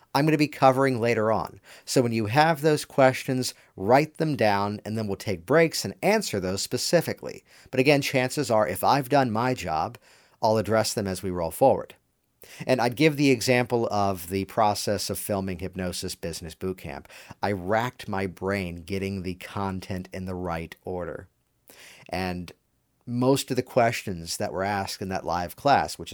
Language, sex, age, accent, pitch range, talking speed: English, male, 50-69, American, 95-135 Hz, 180 wpm